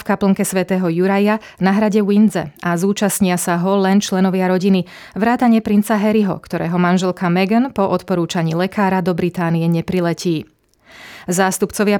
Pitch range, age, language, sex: 175-210 Hz, 30-49, Slovak, female